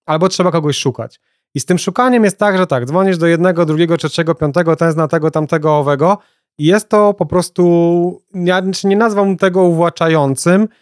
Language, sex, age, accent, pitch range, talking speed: Polish, male, 30-49, native, 140-175 Hz, 190 wpm